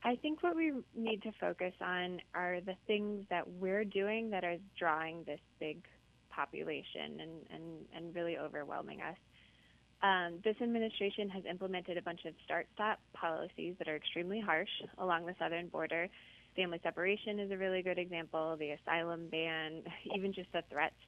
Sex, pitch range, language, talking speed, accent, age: female, 170-215 Hz, English, 160 wpm, American, 20-39